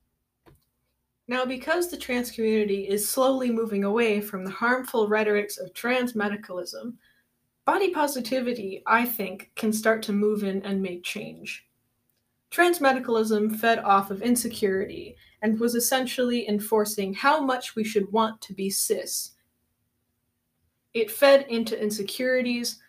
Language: English